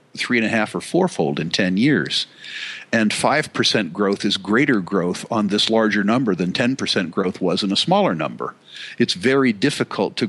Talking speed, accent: 180 wpm, American